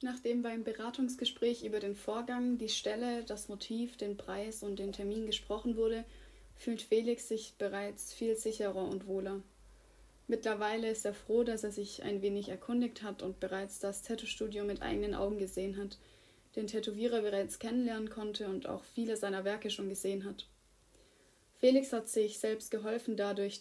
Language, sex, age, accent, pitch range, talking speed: German, female, 30-49, German, 200-225 Hz, 165 wpm